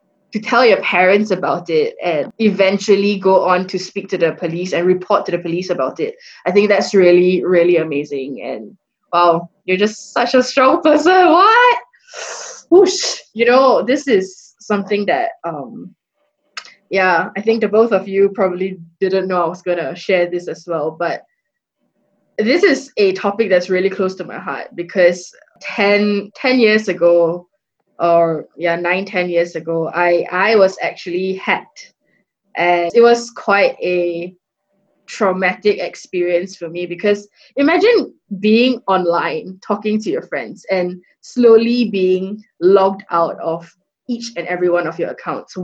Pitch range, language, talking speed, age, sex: 175-220 Hz, English, 160 wpm, 10-29, female